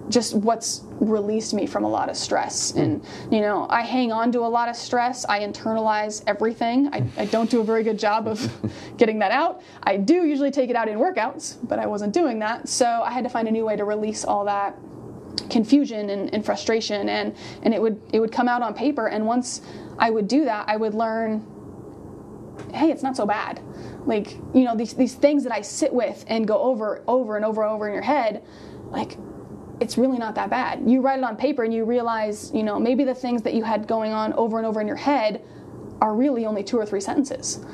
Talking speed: 230 wpm